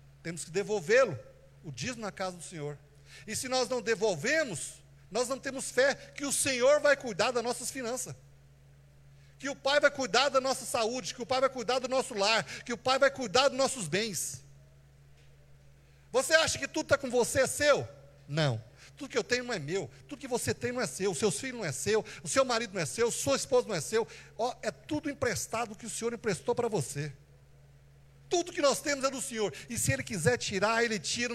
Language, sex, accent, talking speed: Portuguese, male, Brazilian, 220 wpm